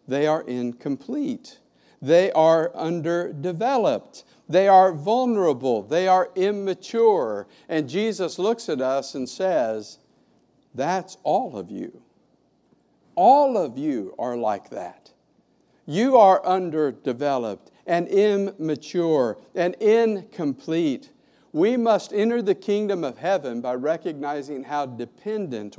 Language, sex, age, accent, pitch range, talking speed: English, male, 50-69, American, 140-190 Hz, 110 wpm